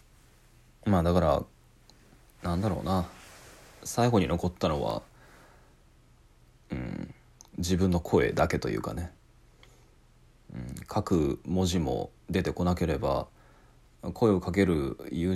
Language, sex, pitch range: Japanese, male, 80-105 Hz